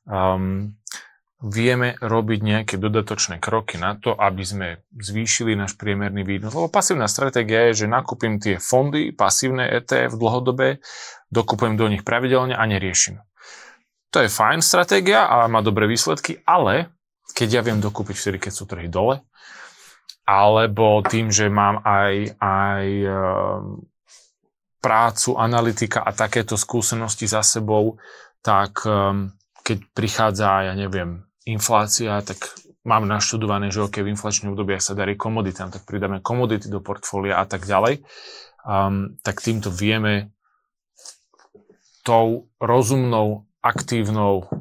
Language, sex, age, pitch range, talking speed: Slovak, male, 20-39, 100-115 Hz, 130 wpm